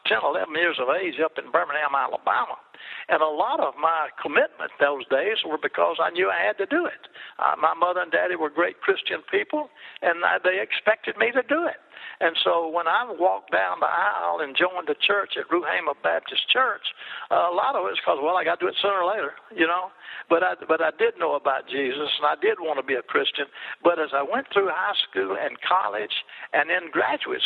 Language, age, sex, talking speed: English, 60-79, male, 225 wpm